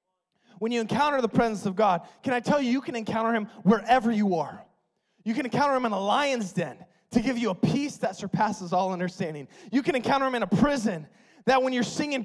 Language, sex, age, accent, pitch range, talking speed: English, male, 20-39, American, 210-265 Hz, 225 wpm